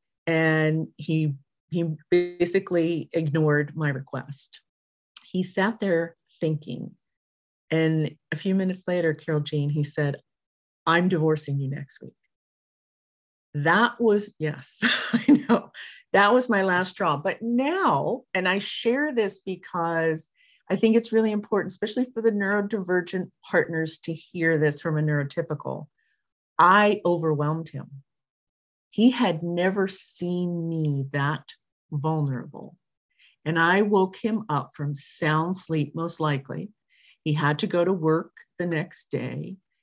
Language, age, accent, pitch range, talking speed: English, 40-59, American, 150-190 Hz, 130 wpm